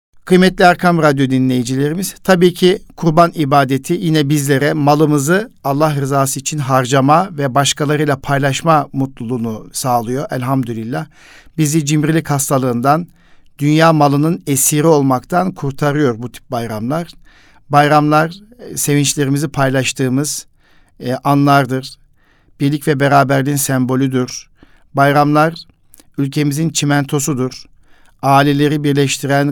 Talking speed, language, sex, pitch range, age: 95 wpm, Turkish, male, 135-155 Hz, 60-79